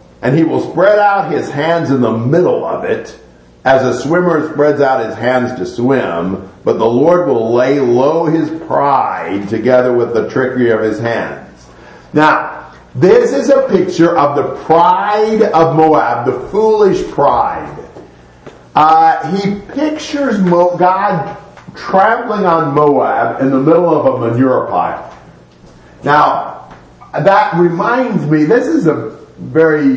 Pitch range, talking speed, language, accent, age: 130-175 Hz, 145 wpm, English, American, 50-69